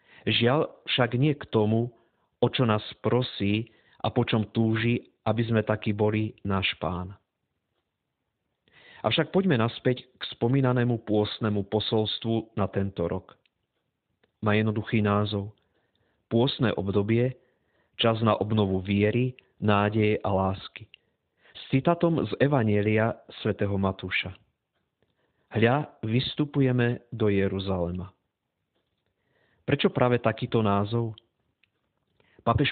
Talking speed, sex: 105 wpm, male